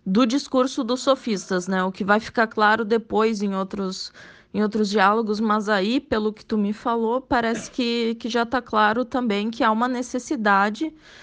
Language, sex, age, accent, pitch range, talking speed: Portuguese, female, 20-39, Brazilian, 210-255 Hz, 180 wpm